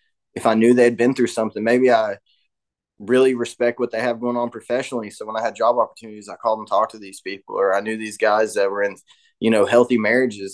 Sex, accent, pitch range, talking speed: male, American, 105-125 Hz, 240 wpm